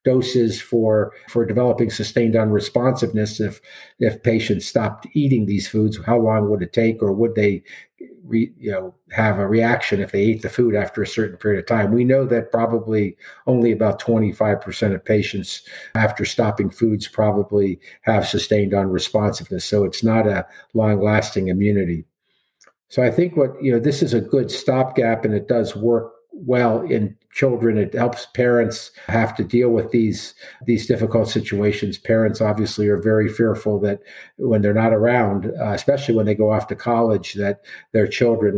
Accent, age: American, 50-69